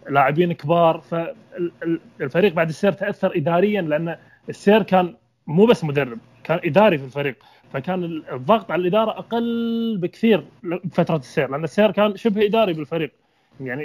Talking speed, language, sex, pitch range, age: 140 wpm, Arabic, male, 150-180 Hz, 20-39